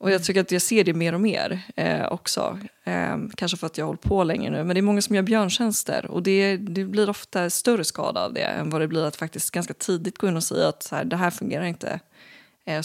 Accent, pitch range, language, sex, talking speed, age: native, 160-200 Hz, Swedish, female, 265 wpm, 20-39